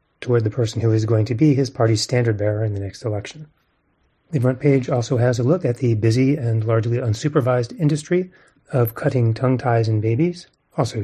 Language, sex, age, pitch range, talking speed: English, male, 30-49, 115-140 Hz, 195 wpm